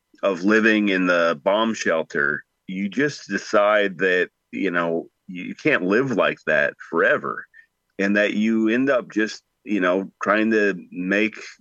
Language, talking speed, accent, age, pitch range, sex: English, 150 wpm, American, 30-49, 95-110 Hz, male